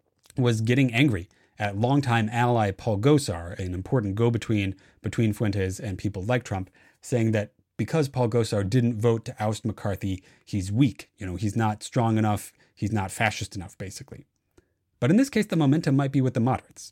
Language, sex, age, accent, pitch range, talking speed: English, male, 30-49, American, 100-130 Hz, 185 wpm